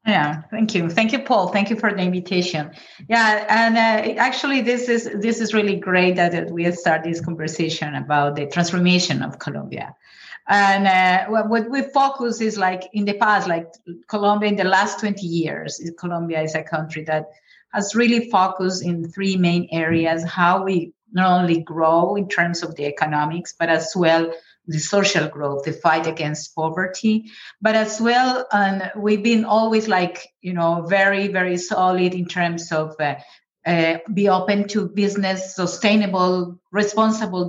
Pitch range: 165-210 Hz